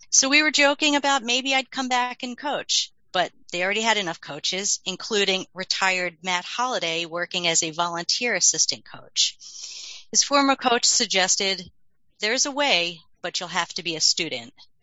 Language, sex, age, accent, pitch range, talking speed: English, female, 40-59, American, 175-230 Hz, 165 wpm